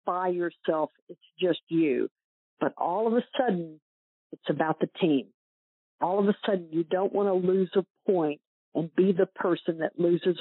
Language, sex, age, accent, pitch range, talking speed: English, female, 50-69, American, 175-210 Hz, 180 wpm